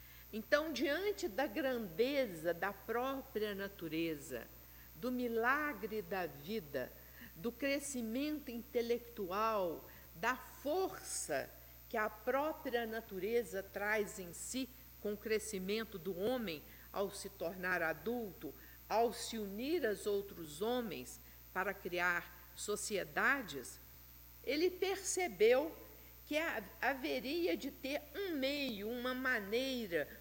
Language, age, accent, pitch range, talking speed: Portuguese, 60-79, Brazilian, 190-270 Hz, 100 wpm